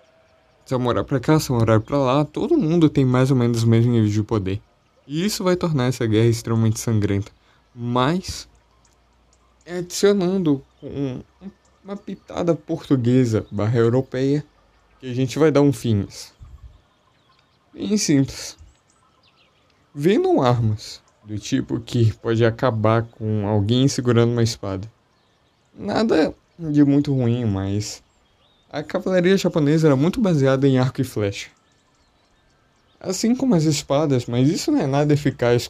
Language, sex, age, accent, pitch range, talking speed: Portuguese, male, 20-39, Brazilian, 110-160 Hz, 140 wpm